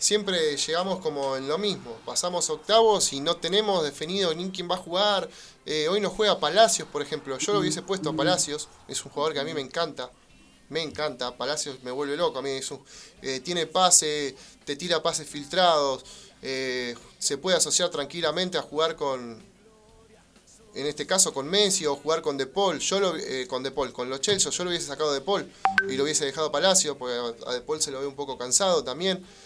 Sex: male